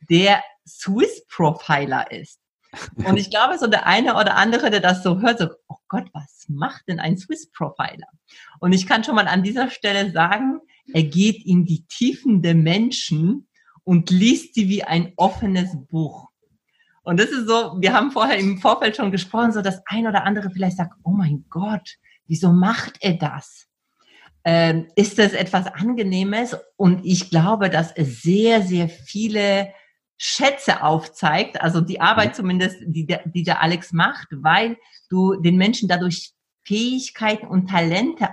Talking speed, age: 165 wpm, 40-59